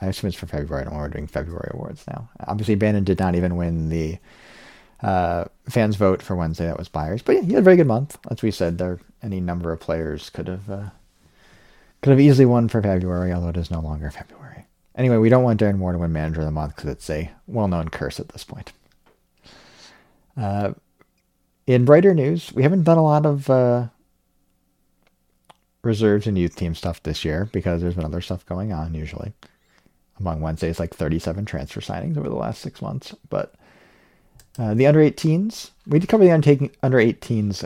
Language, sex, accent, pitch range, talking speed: English, male, American, 85-120 Hz, 200 wpm